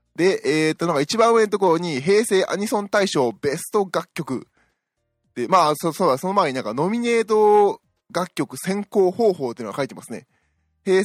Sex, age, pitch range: male, 20-39, 135-180 Hz